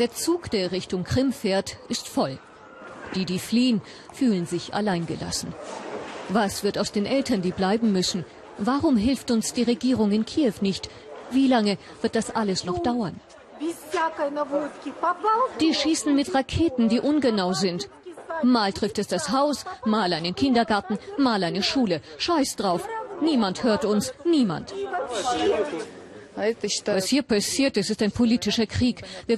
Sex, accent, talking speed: female, German, 140 wpm